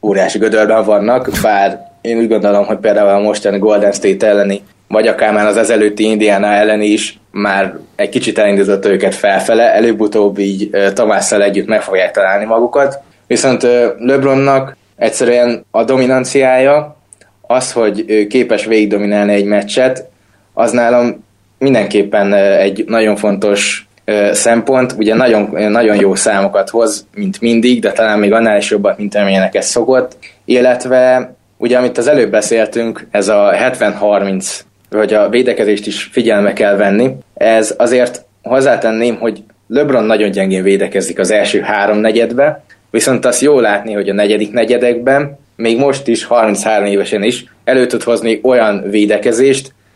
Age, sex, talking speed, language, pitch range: 20-39, male, 140 wpm, Hungarian, 105-120 Hz